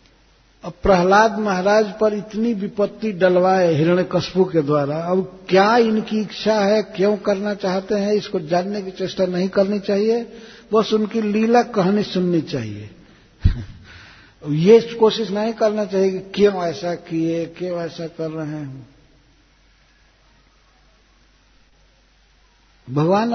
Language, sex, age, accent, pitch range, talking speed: Hindi, male, 60-79, native, 150-205 Hz, 120 wpm